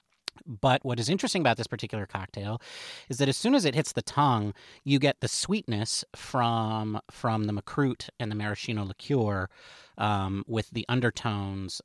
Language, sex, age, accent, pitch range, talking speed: English, male, 40-59, American, 105-145 Hz, 165 wpm